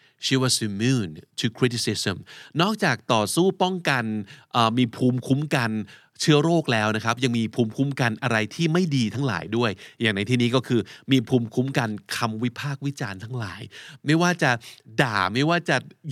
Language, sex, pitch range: Thai, male, 110-150 Hz